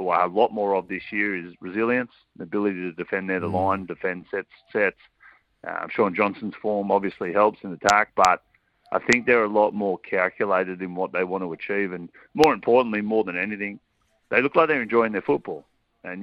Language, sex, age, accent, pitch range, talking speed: English, male, 30-49, Australian, 90-105 Hz, 200 wpm